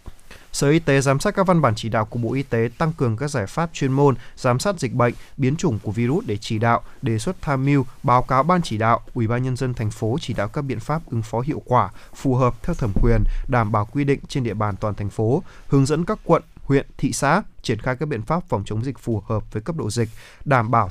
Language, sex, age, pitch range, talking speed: Vietnamese, male, 20-39, 115-145 Hz, 270 wpm